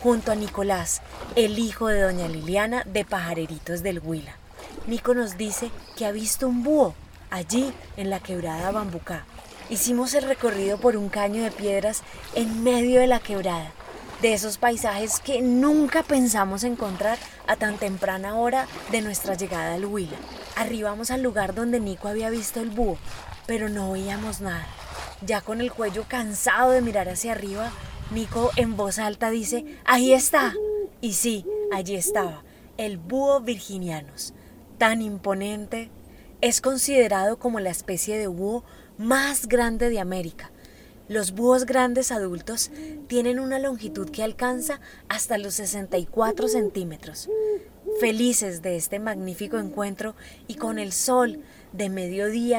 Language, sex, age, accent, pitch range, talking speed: Spanish, female, 20-39, Colombian, 200-245 Hz, 145 wpm